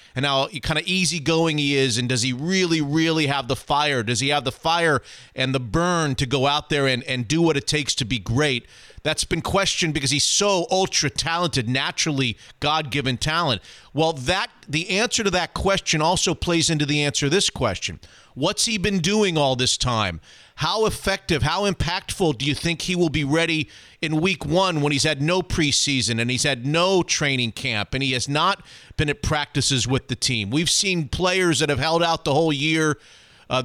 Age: 40-59